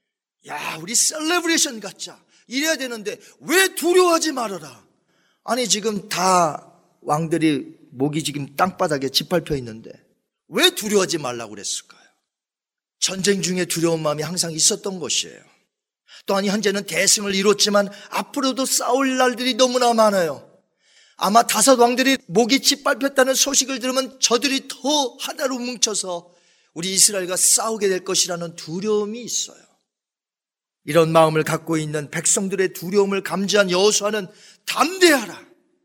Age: 40-59